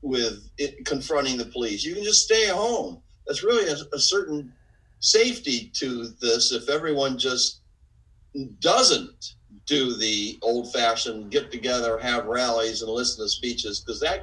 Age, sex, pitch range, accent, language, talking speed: 50-69, male, 110-140 Hz, American, English, 145 wpm